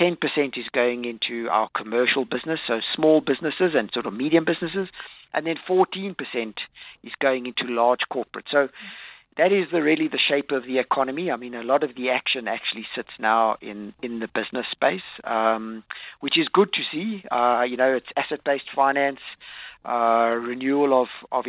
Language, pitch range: English, 125-155 Hz